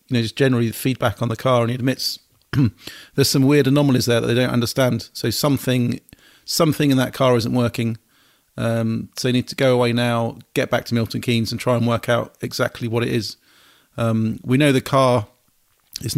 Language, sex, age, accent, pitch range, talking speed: English, male, 40-59, British, 120-135 Hz, 210 wpm